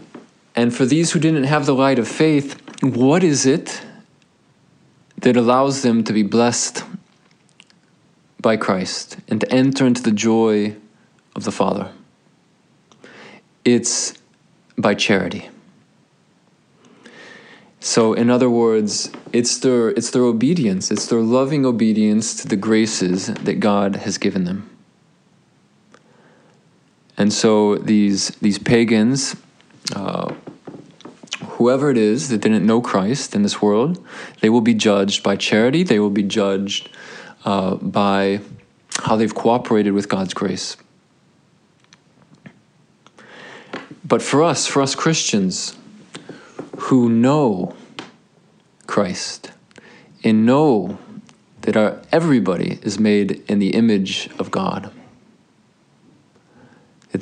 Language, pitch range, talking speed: English, 105-140 Hz, 115 wpm